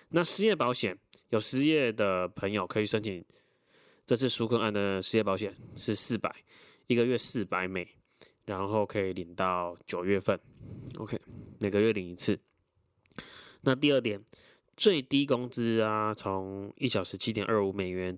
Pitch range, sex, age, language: 95-115 Hz, male, 20-39, Chinese